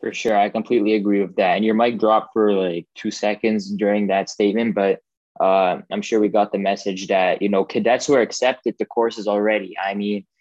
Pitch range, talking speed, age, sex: 95-110 Hz, 215 wpm, 20-39, male